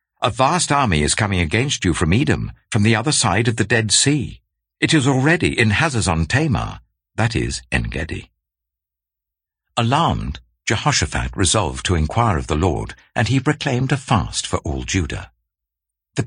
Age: 60-79